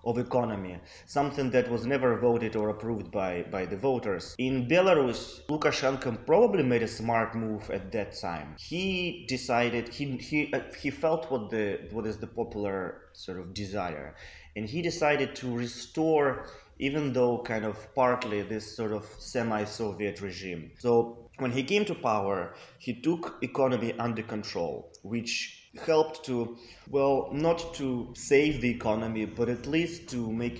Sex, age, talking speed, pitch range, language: male, 20-39, 155 wpm, 105-130 Hz, English